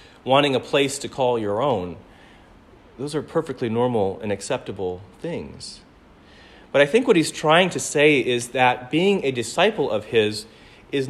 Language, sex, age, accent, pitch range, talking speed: English, male, 40-59, American, 115-145 Hz, 160 wpm